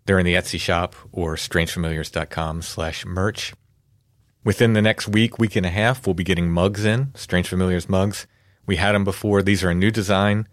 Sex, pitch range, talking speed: male, 85-105 Hz, 195 wpm